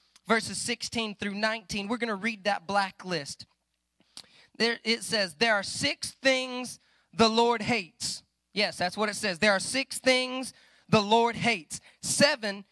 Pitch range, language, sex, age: 180-240 Hz, English, male, 20-39